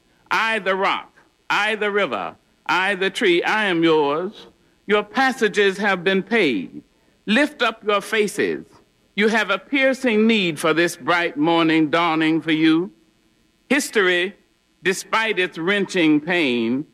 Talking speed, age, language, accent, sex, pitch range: 135 wpm, 60-79, English, American, male, 180-235 Hz